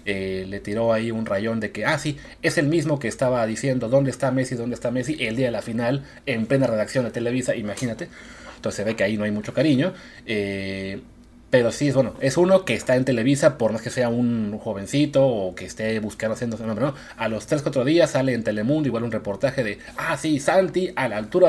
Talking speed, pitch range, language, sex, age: 235 wpm, 115-170 Hz, Spanish, male, 30-49